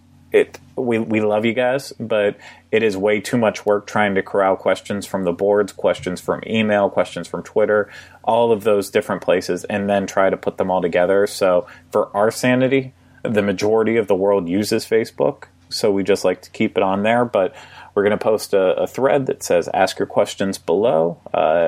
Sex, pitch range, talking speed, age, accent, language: male, 95-105 Hz, 205 wpm, 30-49, American, English